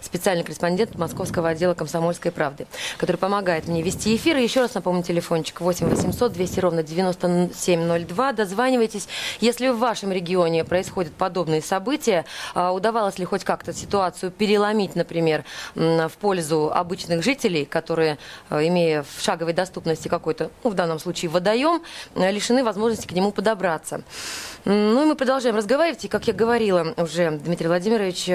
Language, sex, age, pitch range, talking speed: Russian, female, 20-39, 170-215 Hz, 140 wpm